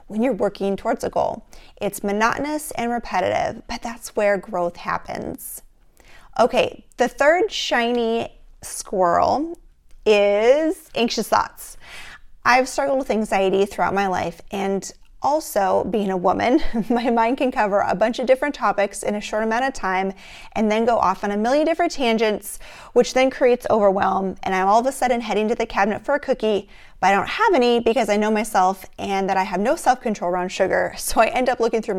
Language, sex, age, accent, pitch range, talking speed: English, female, 30-49, American, 195-250 Hz, 190 wpm